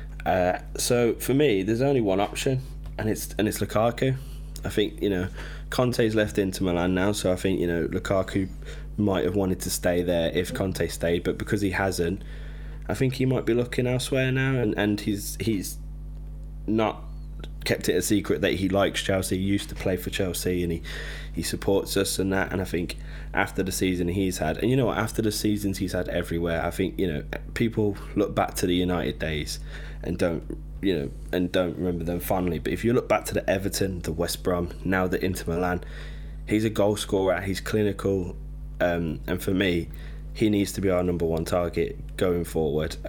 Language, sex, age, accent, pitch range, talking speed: English, male, 20-39, British, 85-105 Hz, 205 wpm